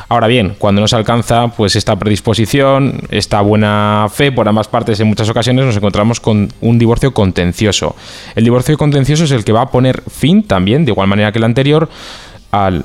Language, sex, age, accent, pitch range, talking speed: Spanish, male, 20-39, Spanish, 100-120 Hz, 190 wpm